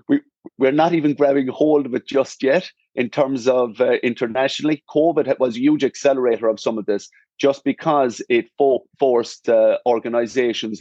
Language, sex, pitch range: English, male, 115-130 Hz